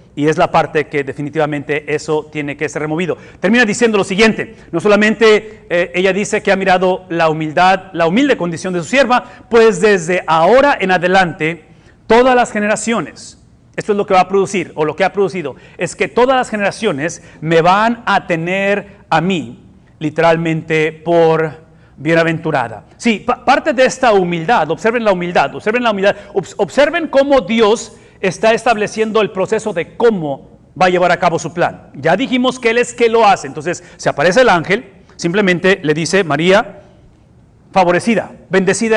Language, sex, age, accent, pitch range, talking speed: English, male, 40-59, Mexican, 170-225 Hz, 170 wpm